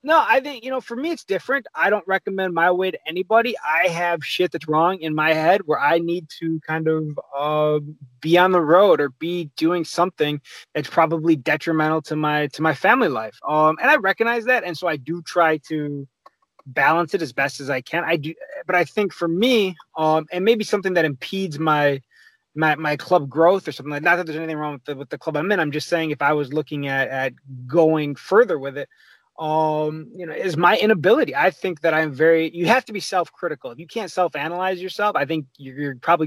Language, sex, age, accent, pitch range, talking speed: English, male, 20-39, American, 145-175 Hz, 230 wpm